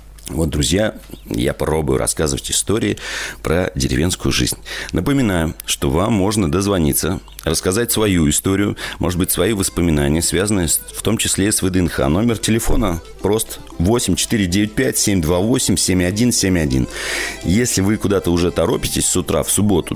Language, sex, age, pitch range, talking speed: Russian, male, 40-59, 80-105 Hz, 120 wpm